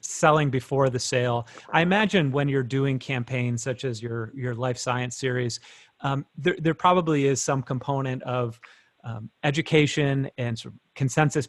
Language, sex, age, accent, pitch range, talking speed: English, male, 30-49, American, 120-135 Hz, 160 wpm